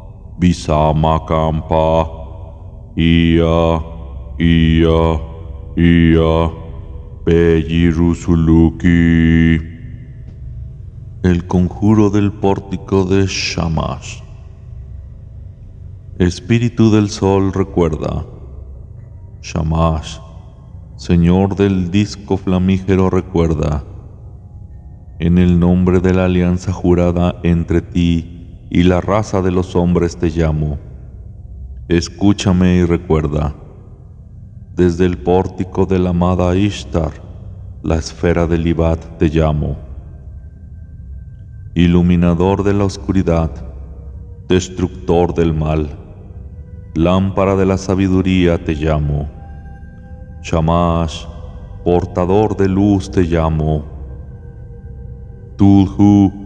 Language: Spanish